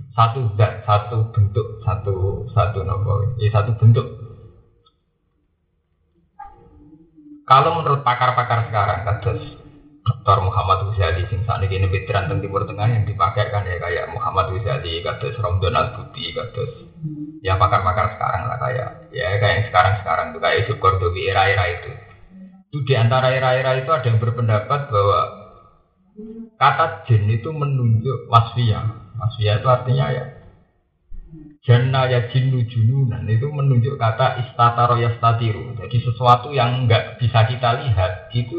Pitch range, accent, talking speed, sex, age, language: 105-125 Hz, native, 125 wpm, male, 30-49, Indonesian